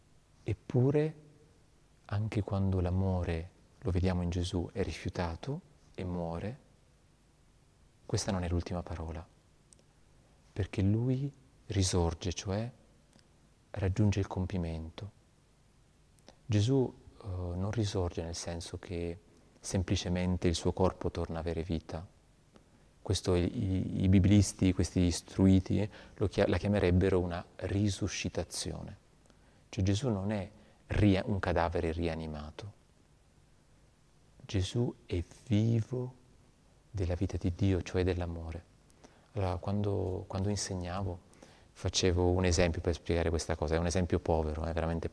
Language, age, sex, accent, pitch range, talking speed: Italian, 30-49, male, native, 85-105 Hz, 110 wpm